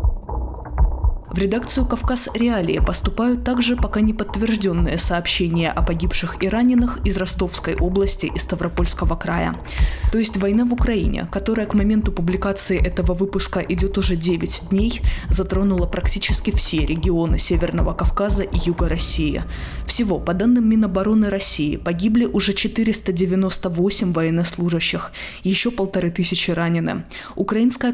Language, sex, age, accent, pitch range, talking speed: Russian, female, 20-39, native, 170-225 Hz, 125 wpm